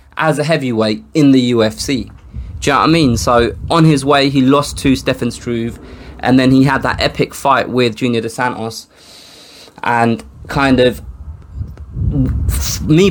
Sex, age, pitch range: male, 20-39, 110-140 Hz